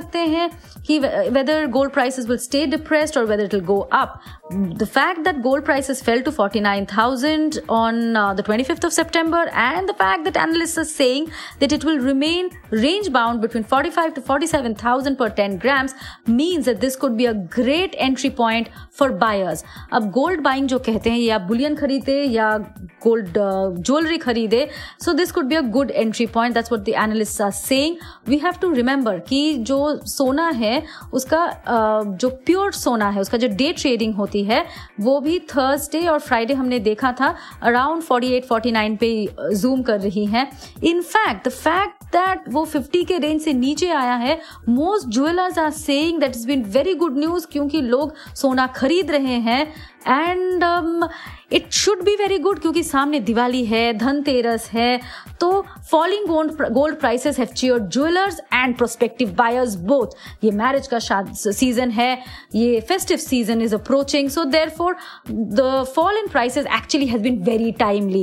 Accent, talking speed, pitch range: native, 120 wpm, 230-315 Hz